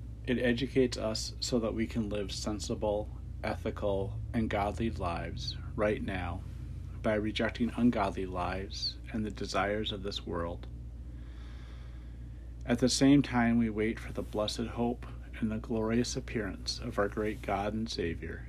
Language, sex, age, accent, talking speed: English, male, 40-59, American, 145 wpm